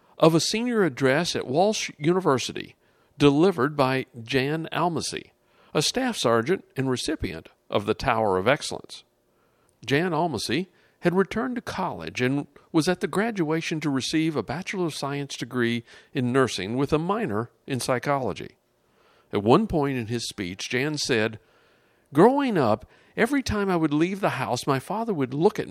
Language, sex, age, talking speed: English, male, 50-69, 160 wpm